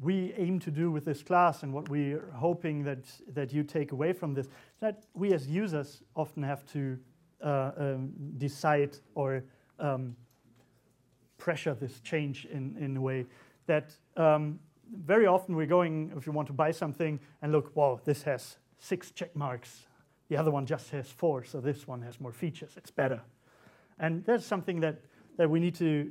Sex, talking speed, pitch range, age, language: male, 180 wpm, 135-170 Hz, 40-59, English